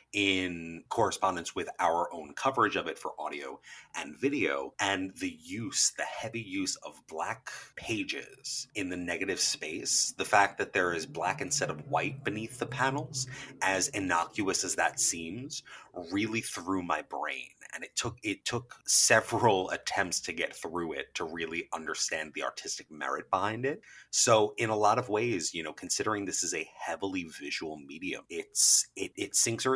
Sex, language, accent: male, English, American